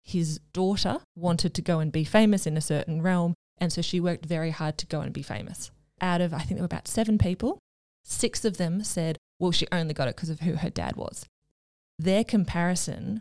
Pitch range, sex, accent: 155-180 Hz, female, Australian